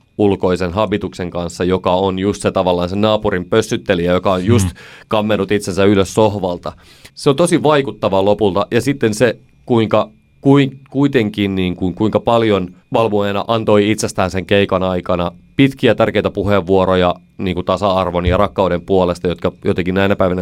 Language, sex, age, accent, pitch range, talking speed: Finnish, male, 30-49, native, 95-115 Hz, 150 wpm